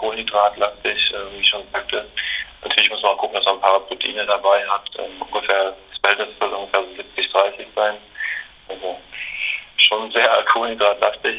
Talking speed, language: 160 wpm, German